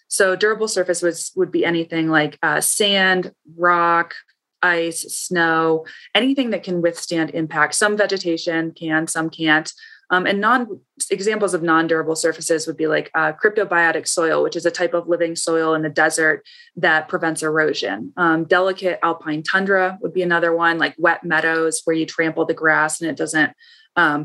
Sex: female